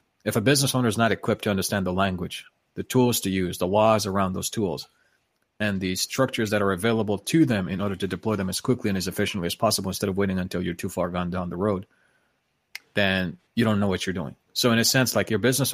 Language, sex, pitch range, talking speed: English, male, 95-110 Hz, 250 wpm